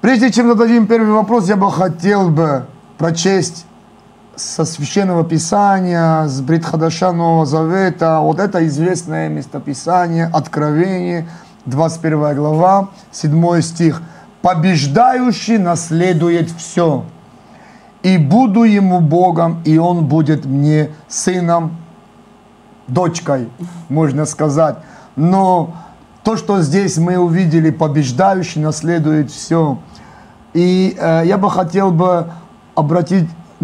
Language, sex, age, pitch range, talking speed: Russian, male, 30-49, 155-185 Hz, 100 wpm